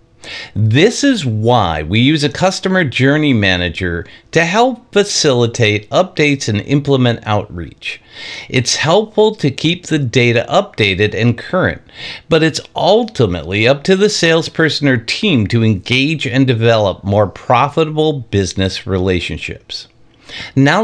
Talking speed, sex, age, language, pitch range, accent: 125 wpm, male, 50-69, English, 105-155 Hz, American